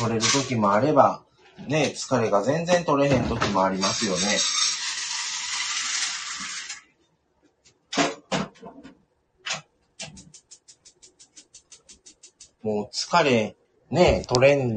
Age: 40-59